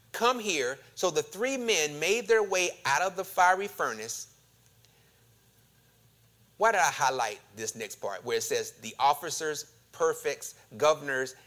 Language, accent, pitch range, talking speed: English, American, 125-200 Hz, 145 wpm